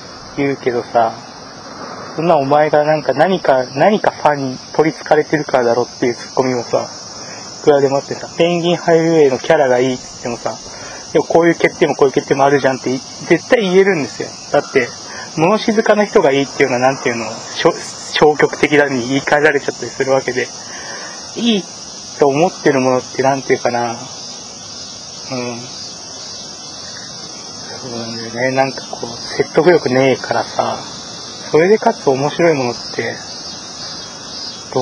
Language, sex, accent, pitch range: Japanese, male, native, 125-160 Hz